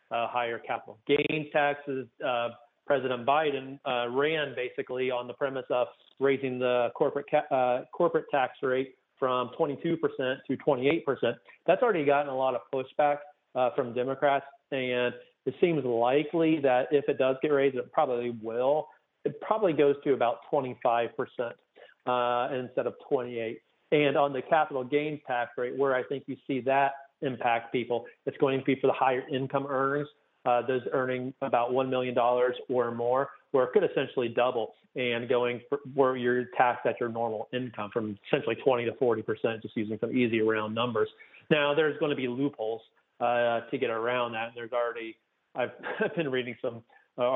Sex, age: male, 40-59